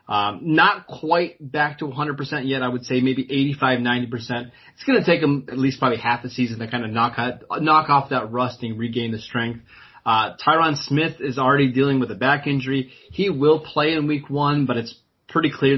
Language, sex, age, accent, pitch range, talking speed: English, male, 30-49, American, 125-150 Hz, 215 wpm